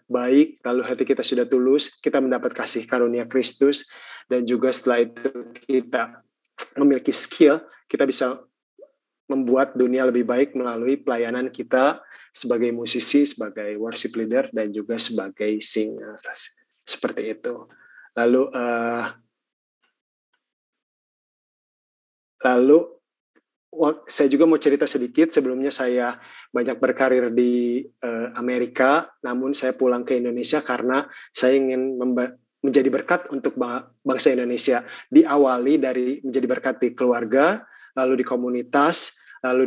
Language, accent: Indonesian, native